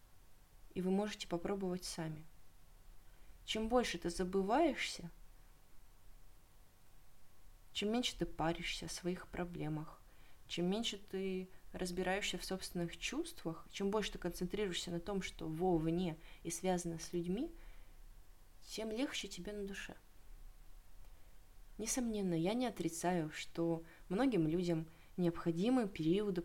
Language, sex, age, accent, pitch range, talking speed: Russian, female, 20-39, native, 160-190 Hz, 110 wpm